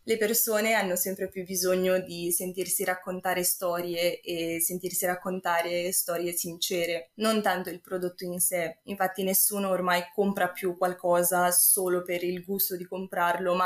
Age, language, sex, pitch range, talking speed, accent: 20-39, Italian, female, 180-205 Hz, 150 wpm, native